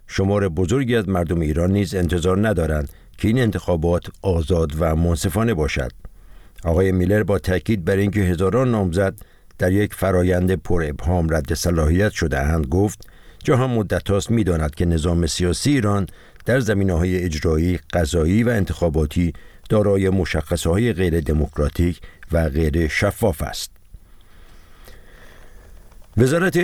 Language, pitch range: Persian, 80-105 Hz